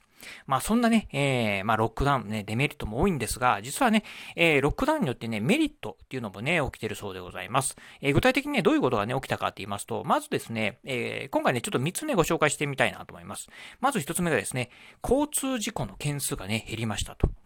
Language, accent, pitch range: Japanese, native, 110-170 Hz